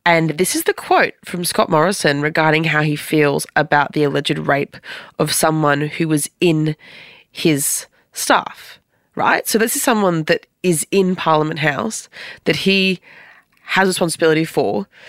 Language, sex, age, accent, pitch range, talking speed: English, female, 20-39, Australian, 155-195 Hz, 150 wpm